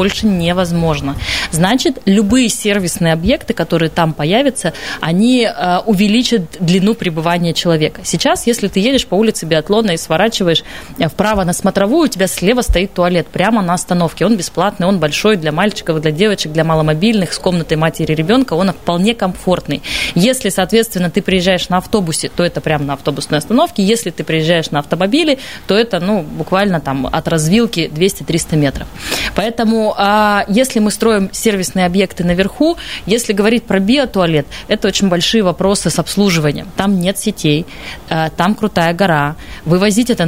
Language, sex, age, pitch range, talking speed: Russian, female, 20-39, 165-215 Hz, 150 wpm